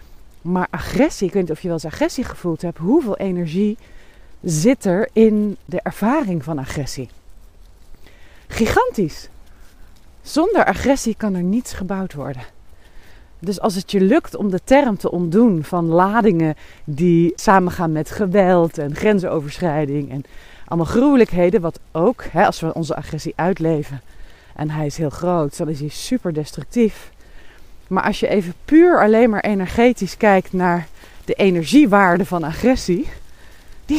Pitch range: 165-215 Hz